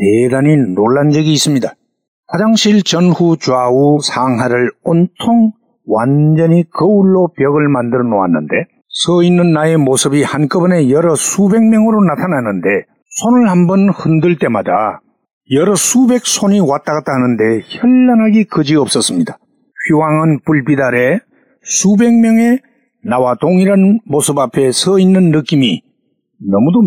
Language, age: Korean, 50-69